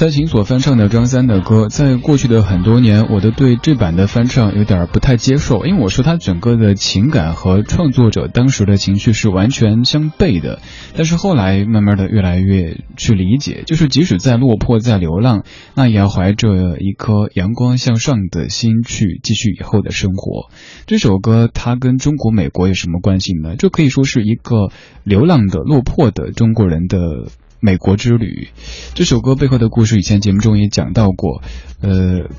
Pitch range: 95-120 Hz